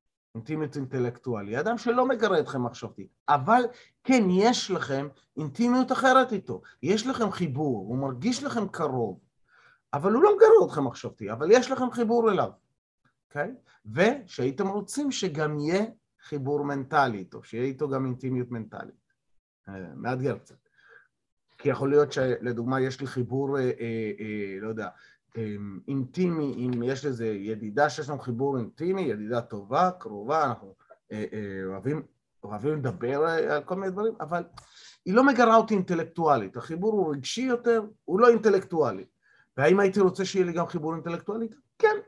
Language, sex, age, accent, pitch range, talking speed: Hebrew, male, 30-49, native, 130-205 Hz, 150 wpm